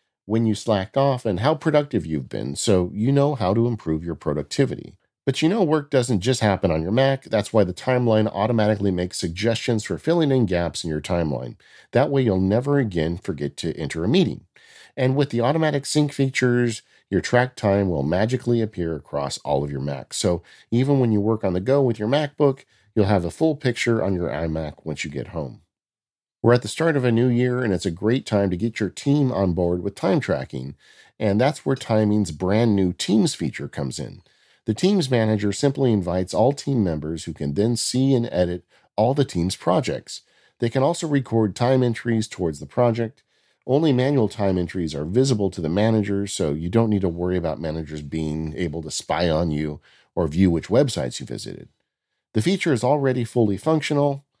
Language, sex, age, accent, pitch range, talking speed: English, male, 50-69, American, 90-130 Hz, 205 wpm